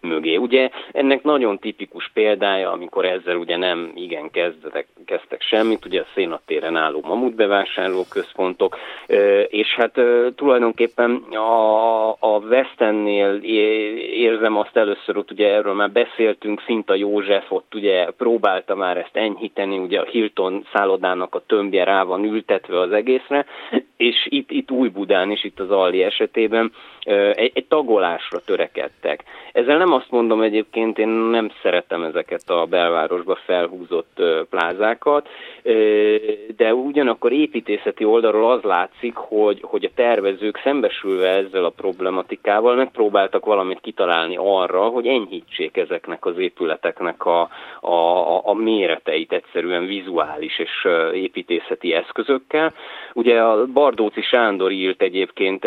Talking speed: 125 wpm